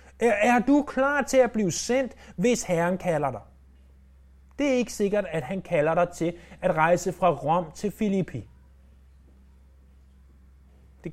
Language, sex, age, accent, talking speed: Danish, male, 30-49, native, 145 wpm